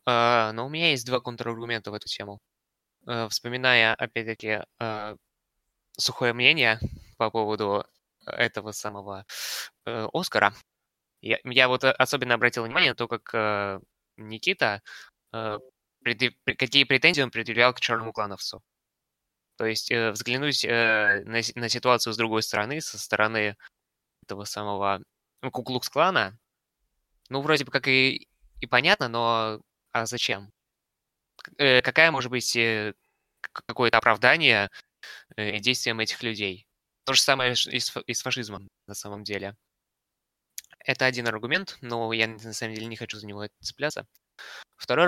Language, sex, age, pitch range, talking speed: Ukrainian, male, 20-39, 105-125 Hz, 115 wpm